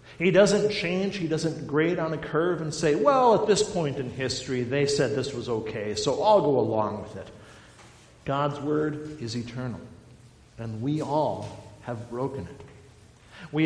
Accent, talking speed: American, 170 wpm